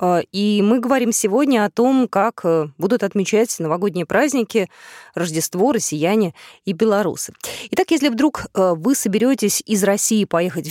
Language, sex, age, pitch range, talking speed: Russian, female, 20-39, 200-280 Hz, 130 wpm